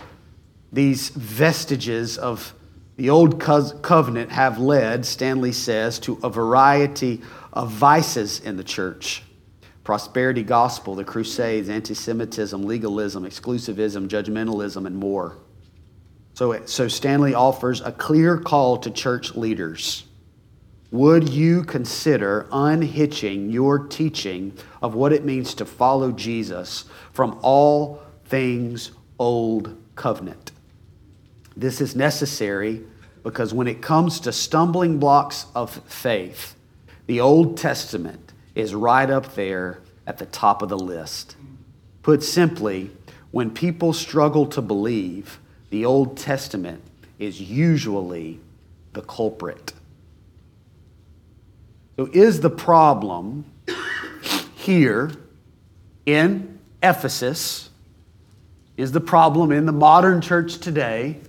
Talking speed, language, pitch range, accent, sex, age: 110 wpm, English, 100-140 Hz, American, male, 40-59